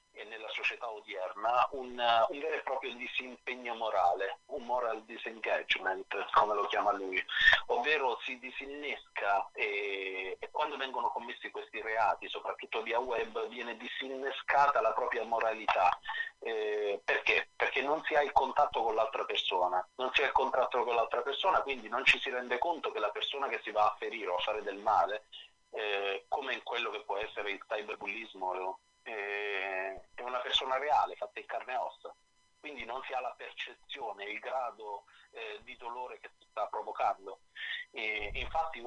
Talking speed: 170 wpm